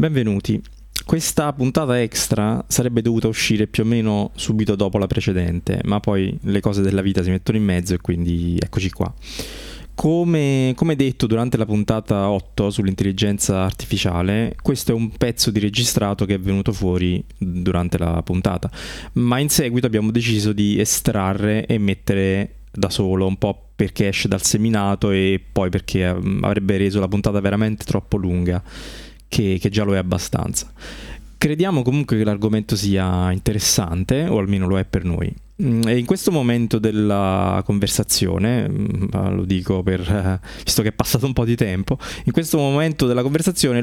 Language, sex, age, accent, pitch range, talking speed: Italian, male, 20-39, native, 95-120 Hz, 160 wpm